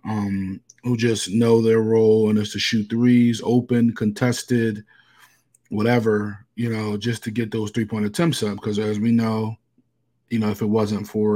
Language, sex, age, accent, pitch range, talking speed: English, male, 20-39, American, 110-120 Hz, 175 wpm